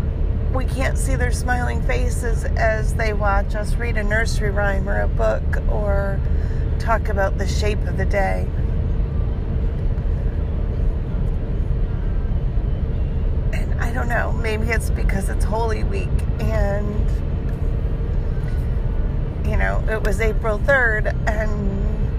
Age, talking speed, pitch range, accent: 40-59, 115 wpm, 70-85 Hz, American